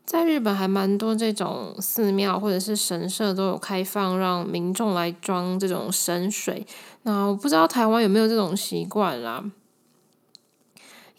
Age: 10-29